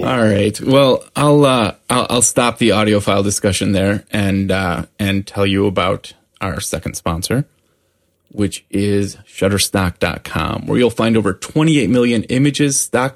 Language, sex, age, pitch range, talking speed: English, male, 20-39, 105-130 Hz, 150 wpm